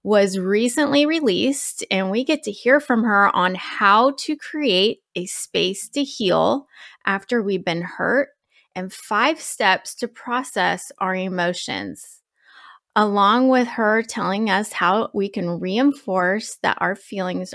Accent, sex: American, female